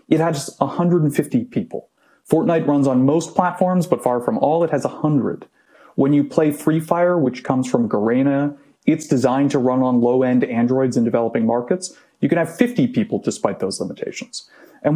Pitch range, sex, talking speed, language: 130-175 Hz, male, 175 wpm, English